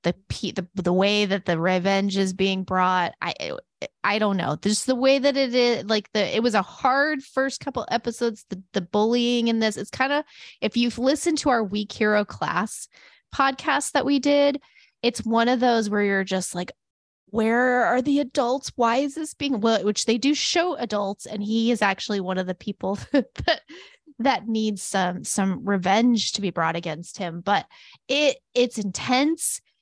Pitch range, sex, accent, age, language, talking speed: 190-250 Hz, female, American, 20-39, English, 190 wpm